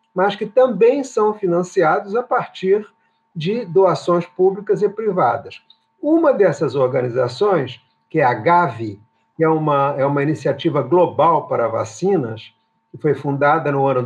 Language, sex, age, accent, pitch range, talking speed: Portuguese, male, 50-69, Brazilian, 135-195 Hz, 135 wpm